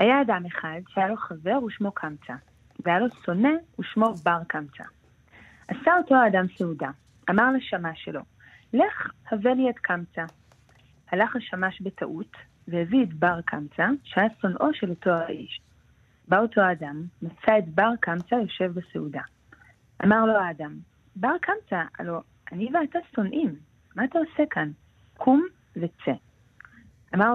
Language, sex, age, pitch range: Hebrew, female, 30-49, 165-230 Hz